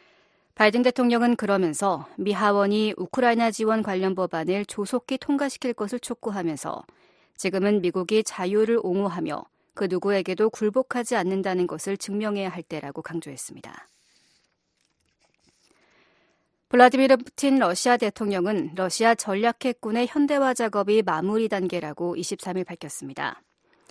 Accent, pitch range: native, 185-245 Hz